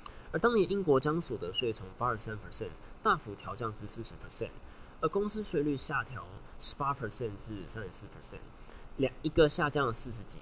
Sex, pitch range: male, 105-145 Hz